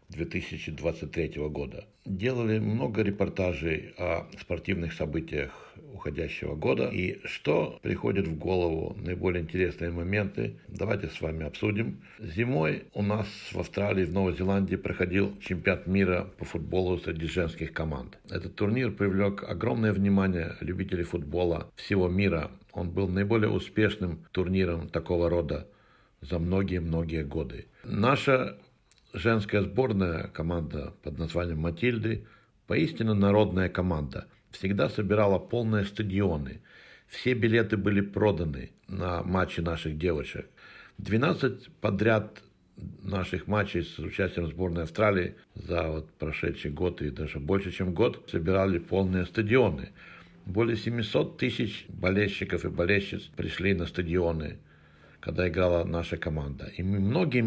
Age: 60-79